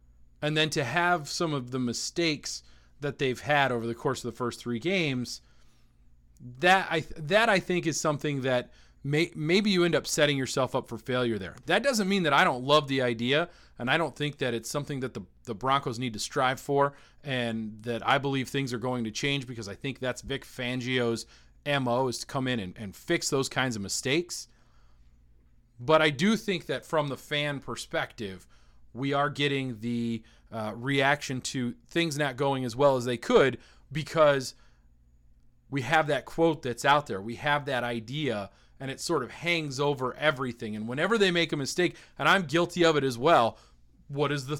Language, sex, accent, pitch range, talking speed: English, male, American, 120-155 Hz, 200 wpm